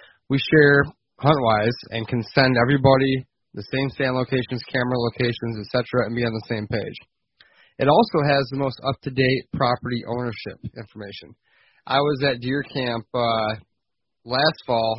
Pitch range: 110-130 Hz